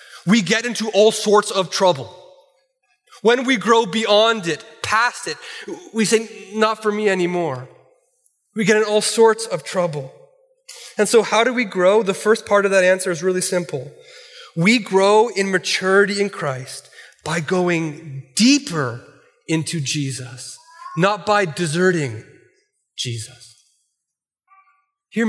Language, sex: English, male